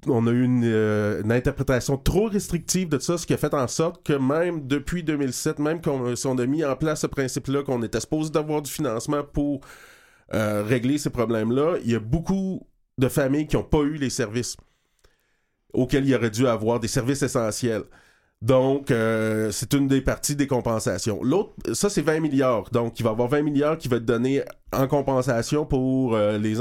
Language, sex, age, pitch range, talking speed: French, male, 30-49, 115-145 Hz, 205 wpm